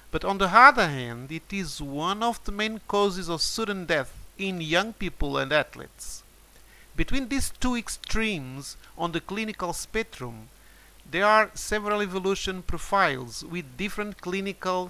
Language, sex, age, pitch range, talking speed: Portuguese, male, 50-69, 160-215 Hz, 145 wpm